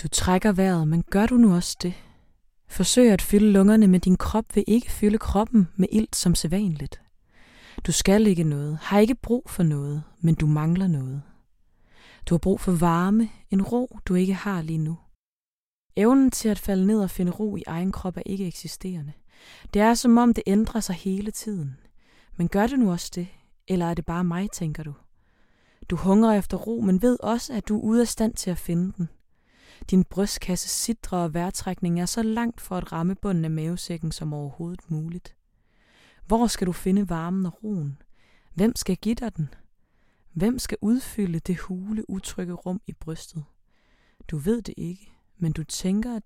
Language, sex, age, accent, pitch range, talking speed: Danish, female, 20-39, native, 170-210 Hz, 190 wpm